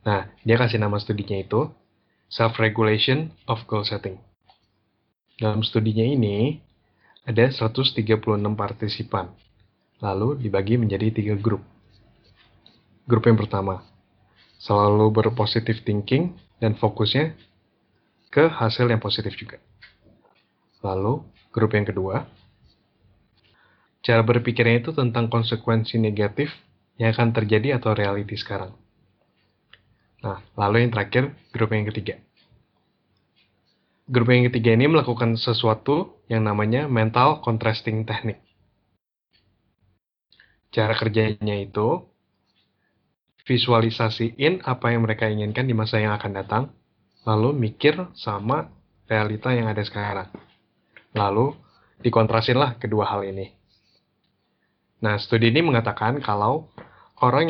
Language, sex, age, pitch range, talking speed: Indonesian, male, 20-39, 105-120 Hz, 105 wpm